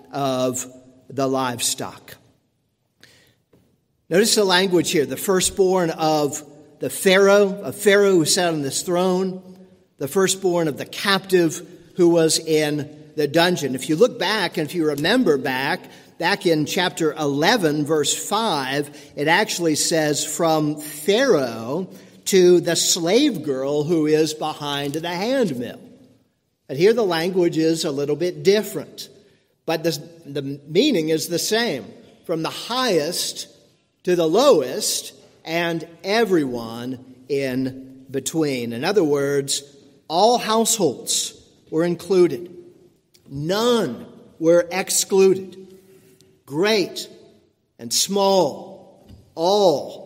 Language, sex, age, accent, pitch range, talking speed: English, male, 50-69, American, 135-180 Hz, 115 wpm